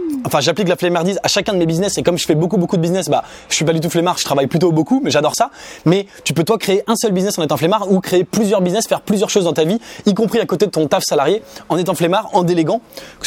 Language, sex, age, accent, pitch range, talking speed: English, male, 20-39, French, 155-190 Hz, 300 wpm